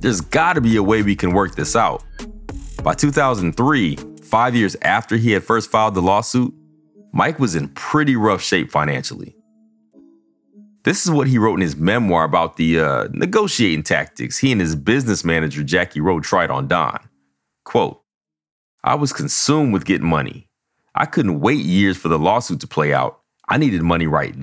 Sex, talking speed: male, 180 wpm